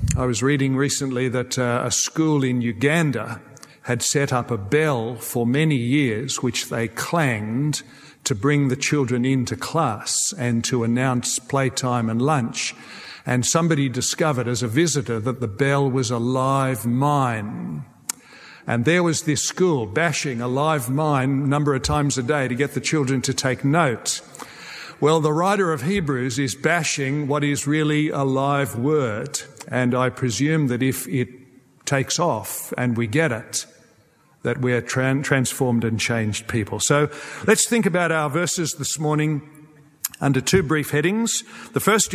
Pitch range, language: 125-150 Hz, English